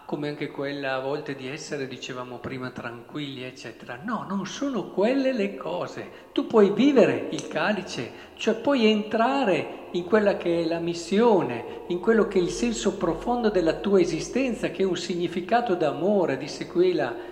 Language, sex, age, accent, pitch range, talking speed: Italian, male, 50-69, native, 150-215 Hz, 165 wpm